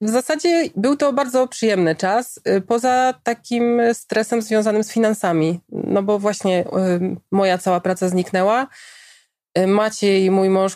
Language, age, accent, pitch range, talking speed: Polish, 20-39, native, 185-215 Hz, 130 wpm